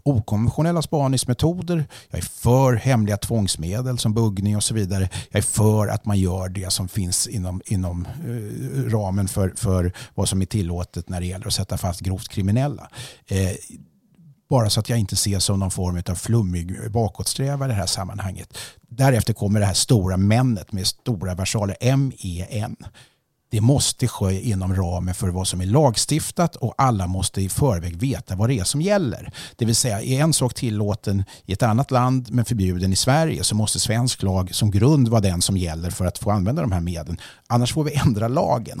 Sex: male